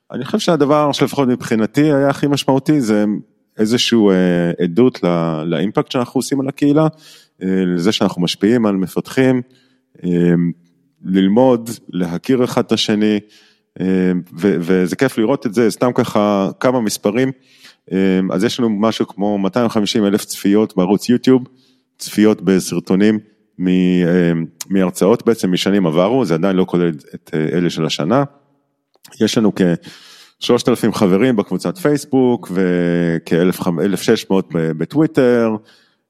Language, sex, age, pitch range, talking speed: Hebrew, male, 30-49, 90-130 Hz, 115 wpm